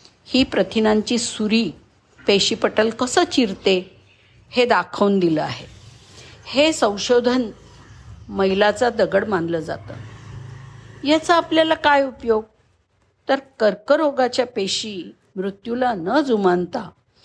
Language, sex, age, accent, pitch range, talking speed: Marathi, female, 50-69, native, 185-250 Hz, 95 wpm